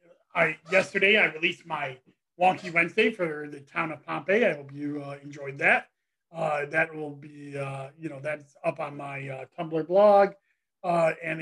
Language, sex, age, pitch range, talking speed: English, male, 40-59, 145-185 Hz, 180 wpm